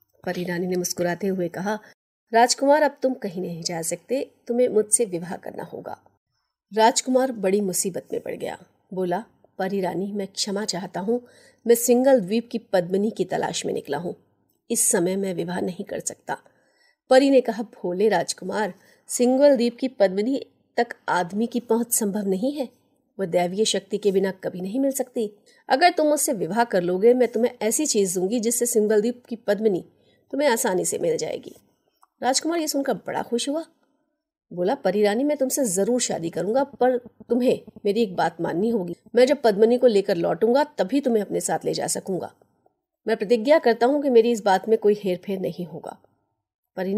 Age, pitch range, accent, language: 30-49, 190-245 Hz, native, Hindi